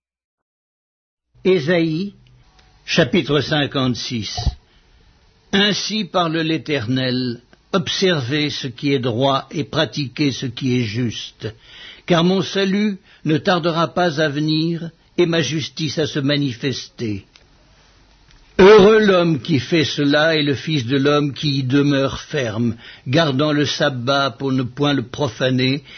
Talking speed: 120 wpm